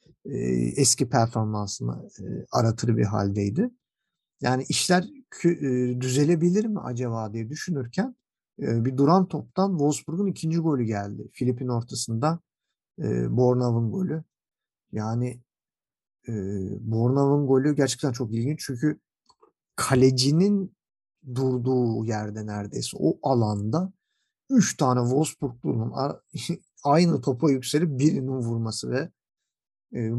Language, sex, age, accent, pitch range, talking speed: Turkish, male, 50-69, native, 115-160 Hz, 90 wpm